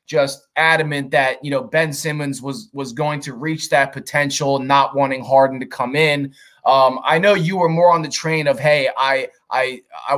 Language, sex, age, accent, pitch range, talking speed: English, male, 20-39, American, 130-155 Hz, 200 wpm